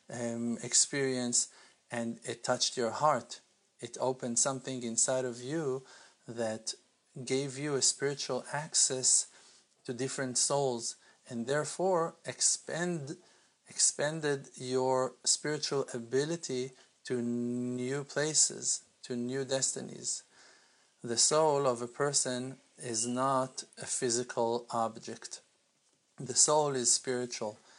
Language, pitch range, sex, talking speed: English, 120-140 Hz, male, 105 wpm